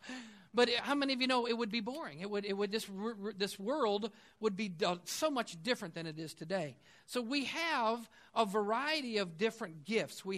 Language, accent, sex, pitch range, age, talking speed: English, American, male, 185-250 Hz, 50-69, 200 wpm